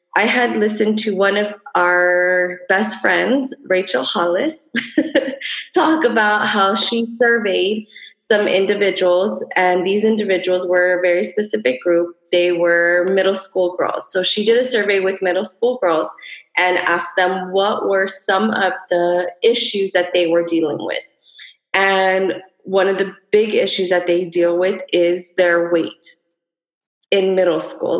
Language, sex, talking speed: English, female, 150 wpm